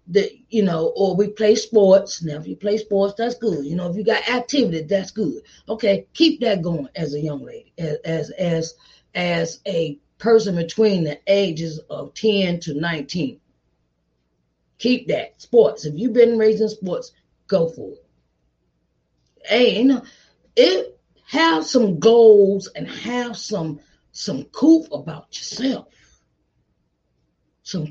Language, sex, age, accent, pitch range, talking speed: English, female, 30-49, American, 160-220 Hz, 150 wpm